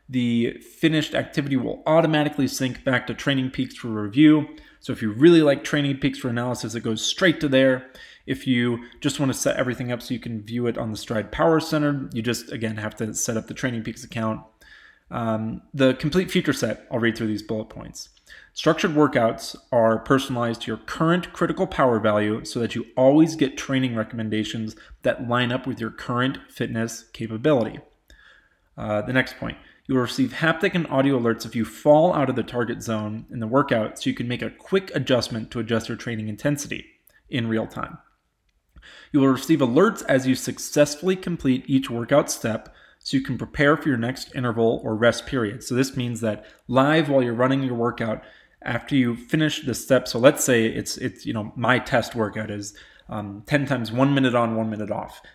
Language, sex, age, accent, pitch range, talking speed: English, male, 20-39, American, 115-140 Hz, 200 wpm